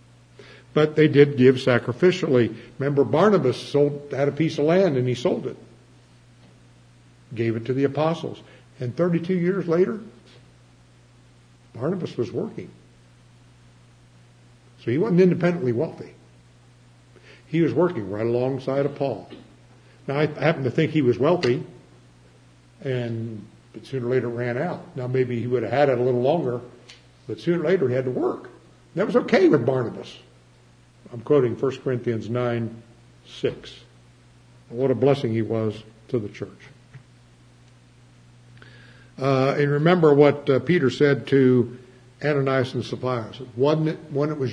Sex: male